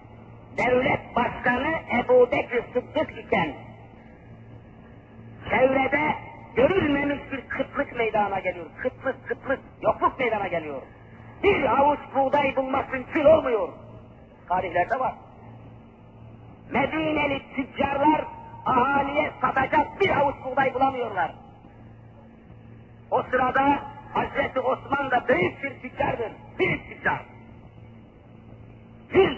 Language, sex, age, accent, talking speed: Turkish, male, 50-69, native, 90 wpm